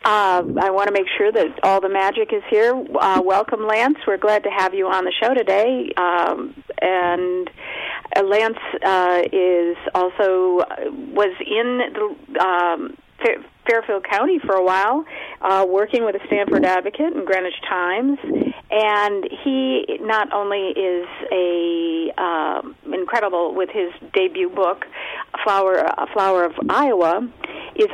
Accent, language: American, English